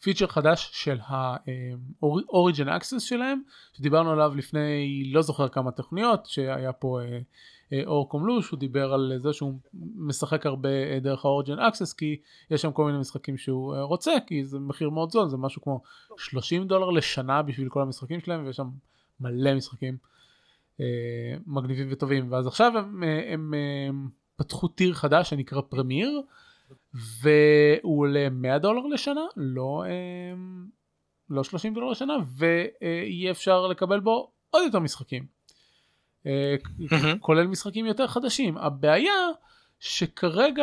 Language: Hebrew